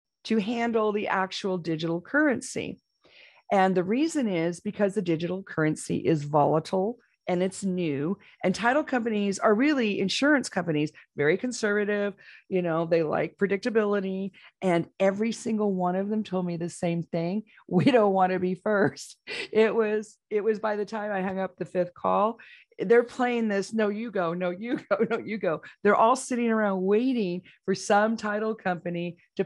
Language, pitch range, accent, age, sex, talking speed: English, 170-210 Hz, American, 40-59, female, 175 wpm